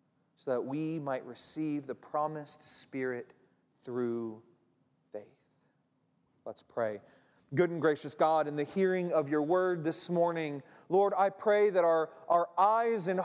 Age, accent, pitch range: 30-49, American, 130-195 Hz